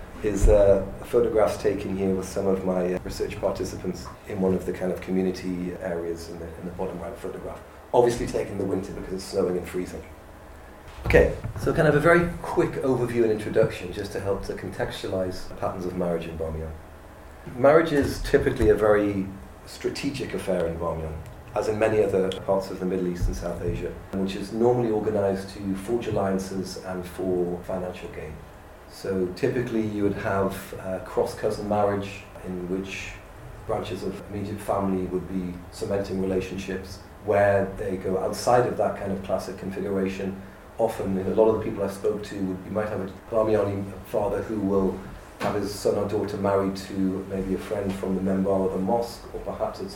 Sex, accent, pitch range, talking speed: male, British, 90-105 Hz, 190 wpm